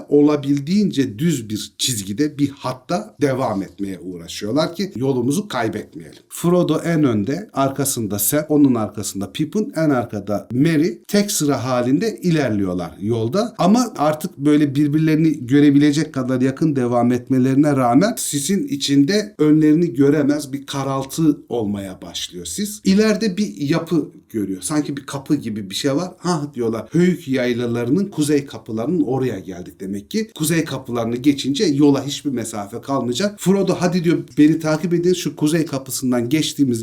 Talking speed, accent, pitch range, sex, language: 140 wpm, native, 125-165 Hz, male, Turkish